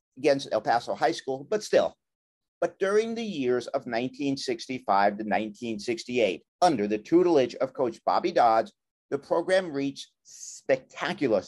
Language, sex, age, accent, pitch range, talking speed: English, male, 50-69, American, 130-165 Hz, 135 wpm